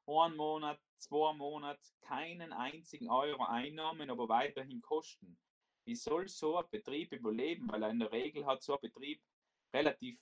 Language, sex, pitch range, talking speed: German, male, 130-170 Hz, 160 wpm